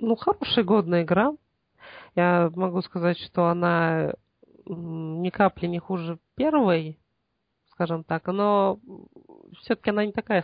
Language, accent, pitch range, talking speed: Russian, native, 165-195 Hz, 120 wpm